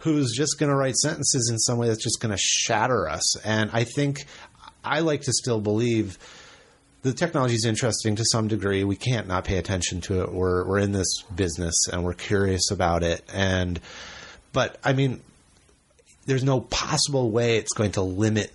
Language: English